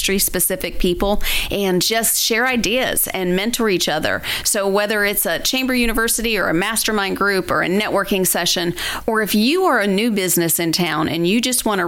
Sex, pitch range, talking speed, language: female, 180-225 Hz, 190 wpm, English